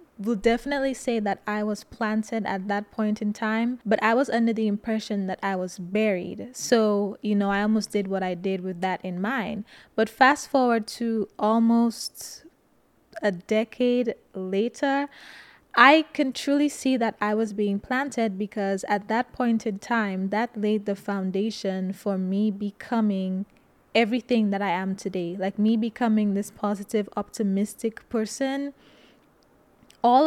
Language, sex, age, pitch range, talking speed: English, female, 20-39, 200-245 Hz, 155 wpm